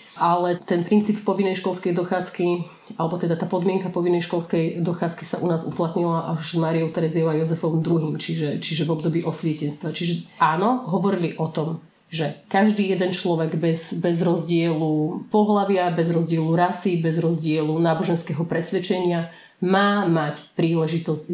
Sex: female